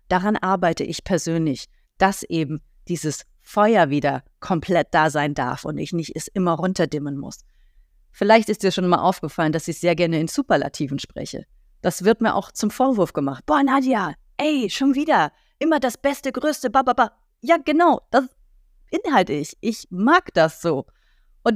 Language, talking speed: German, 175 wpm